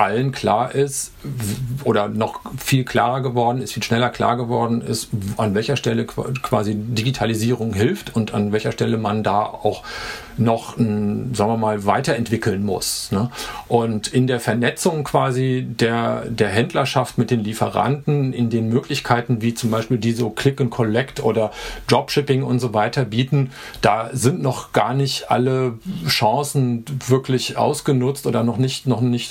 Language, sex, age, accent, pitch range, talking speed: German, male, 50-69, German, 115-135 Hz, 155 wpm